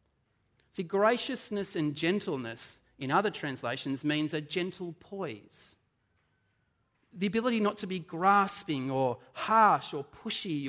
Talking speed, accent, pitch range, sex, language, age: 120 wpm, Australian, 140-205 Hz, male, English, 40-59